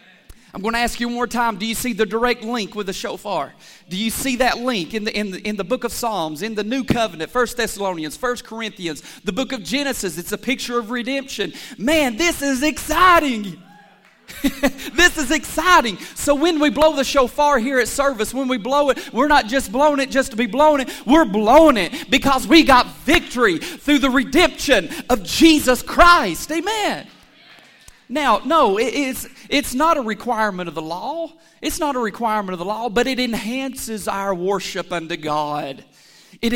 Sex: male